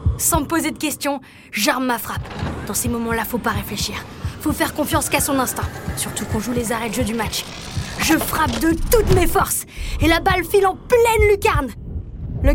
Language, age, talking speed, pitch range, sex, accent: French, 20-39, 205 wpm, 230-330 Hz, female, French